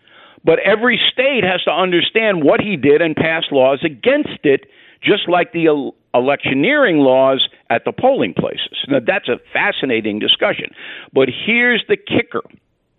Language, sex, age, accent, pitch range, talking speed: English, male, 50-69, American, 155-230 Hz, 150 wpm